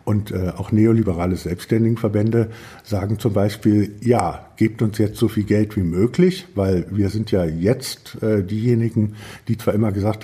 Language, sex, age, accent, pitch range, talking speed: German, male, 50-69, German, 100-120 Hz, 150 wpm